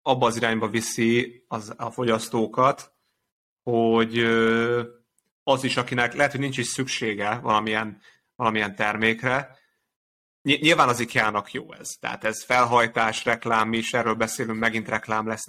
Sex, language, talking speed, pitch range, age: male, Hungarian, 130 wpm, 110-120 Hz, 30-49